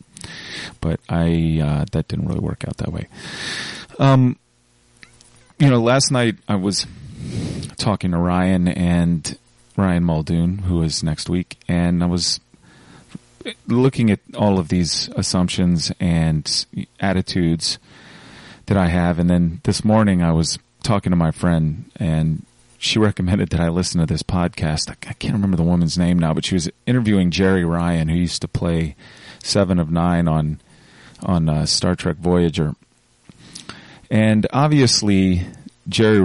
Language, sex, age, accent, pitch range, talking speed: English, male, 30-49, American, 80-90 Hz, 145 wpm